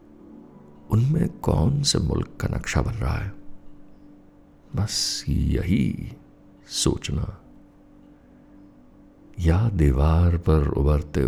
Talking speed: 85 wpm